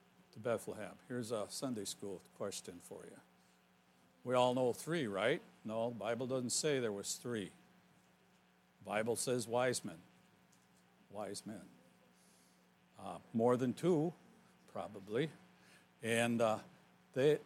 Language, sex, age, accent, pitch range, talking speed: English, male, 60-79, American, 105-150 Hz, 125 wpm